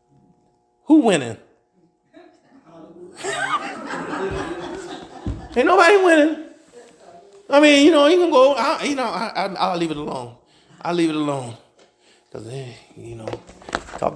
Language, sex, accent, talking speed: English, male, American, 125 wpm